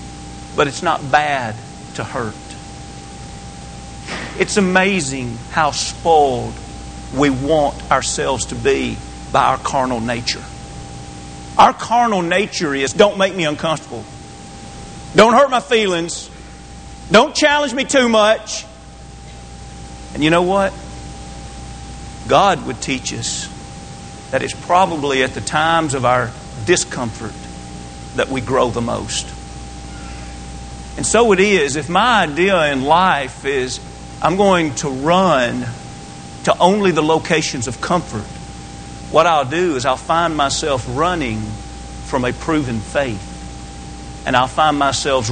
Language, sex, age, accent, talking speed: English, male, 50-69, American, 125 wpm